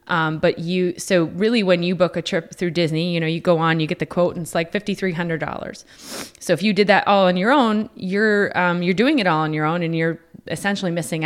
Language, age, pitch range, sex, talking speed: English, 20-39, 160-180 Hz, female, 250 wpm